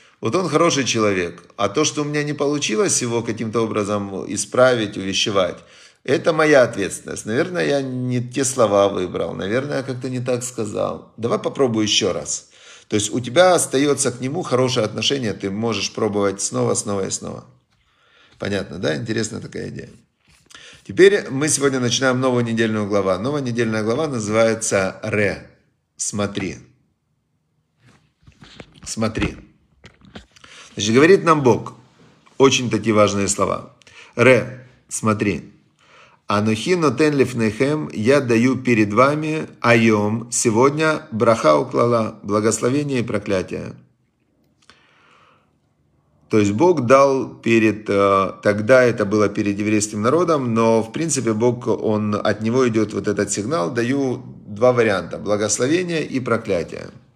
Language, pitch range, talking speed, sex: Russian, 105-130 Hz, 125 wpm, male